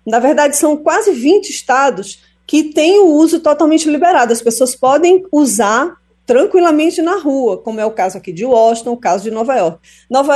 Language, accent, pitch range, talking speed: Portuguese, Brazilian, 220-285 Hz, 185 wpm